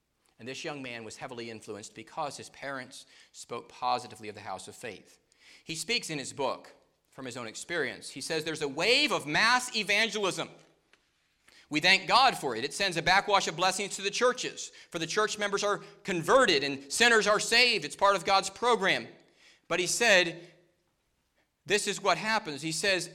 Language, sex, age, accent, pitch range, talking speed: English, male, 40-59, American, 145-200 Hz, 185 wpm